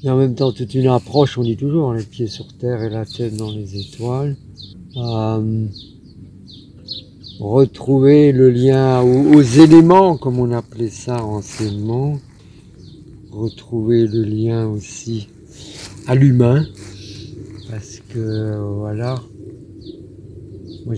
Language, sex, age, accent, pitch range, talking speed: French, male, 50-69, French, 105-125 Hz, 120 wpm